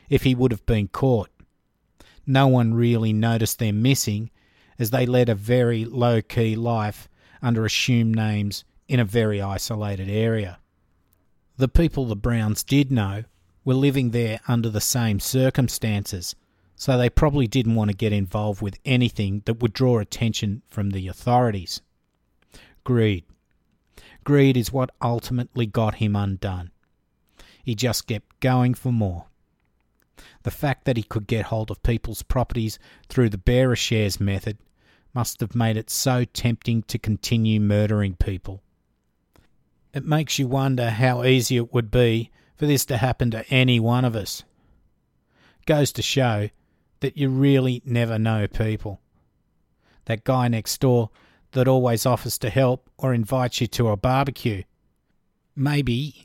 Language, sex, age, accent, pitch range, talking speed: English, male, 50-69, Australian, 105-125 Hz, 150 wpm